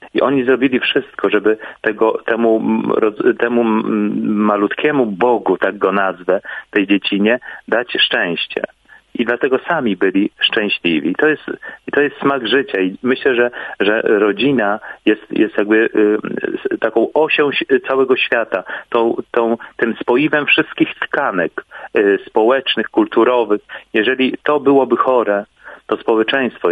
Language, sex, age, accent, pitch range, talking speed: Polish, male, 40-59, native, 110-155 Hz, 130 wpm